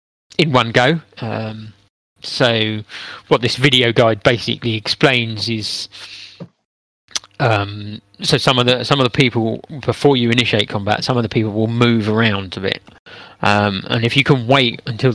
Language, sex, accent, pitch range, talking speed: English, male, British, 105-130 Hz, 160 wpm